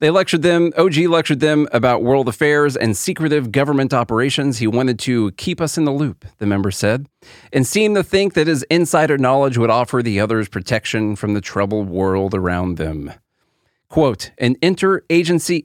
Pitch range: 110-150 Hz